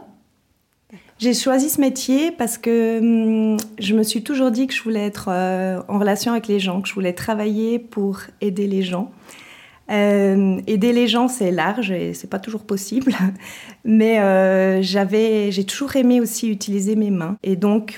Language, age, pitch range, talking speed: French, 30-49, 185-225 Hz, 180 wpm